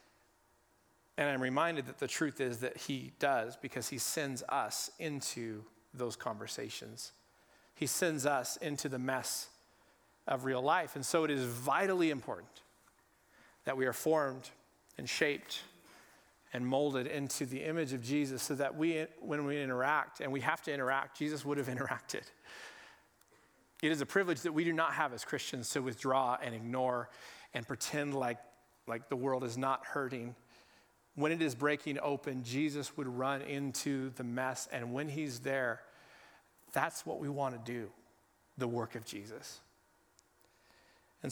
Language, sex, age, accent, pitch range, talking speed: English, male, 40-59, American, 125-150 Hz, 160 wpm